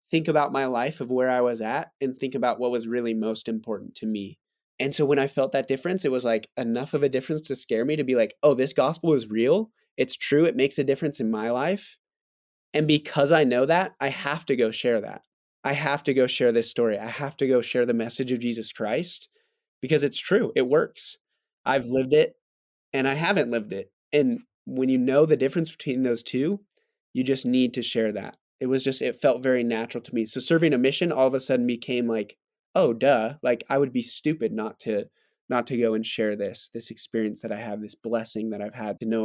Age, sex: 20-39, male